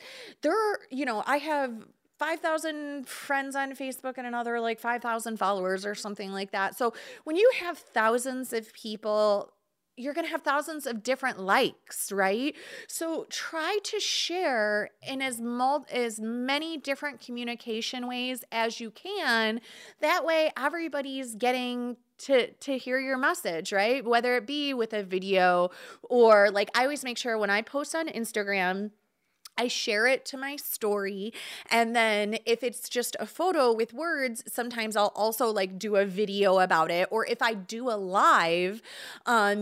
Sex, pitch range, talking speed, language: female, 215-275 Hz, 165 wpm, English